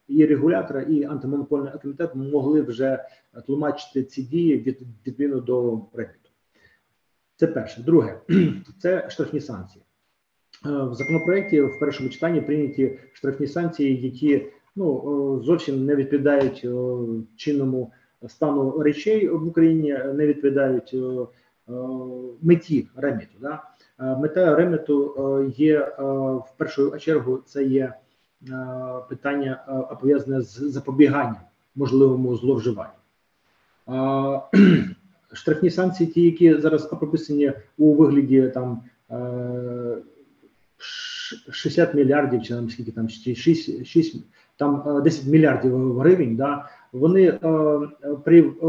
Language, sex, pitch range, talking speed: Ukrainian, male, 130-155 Hz, 105 wpm